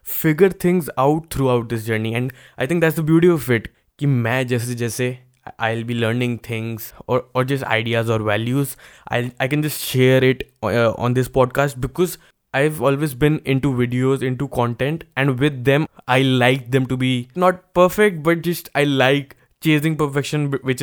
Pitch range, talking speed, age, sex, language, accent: 125-150 Hz, 175 wpm, 20-39, male, Hindi, native